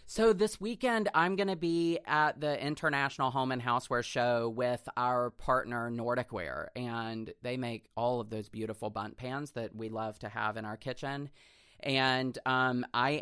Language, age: English, 30-49